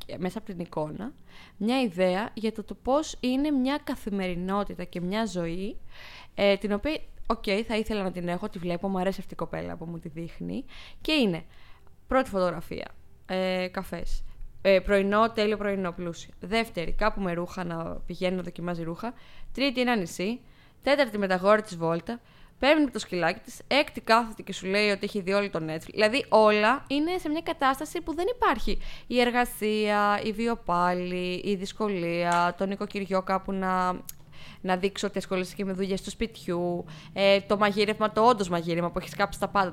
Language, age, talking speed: Greek, 20-39, 170 wpm